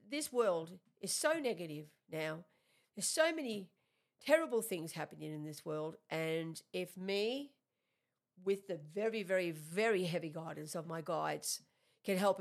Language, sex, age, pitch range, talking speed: English, female, 50-69, 175-250 Hz, 145 wpm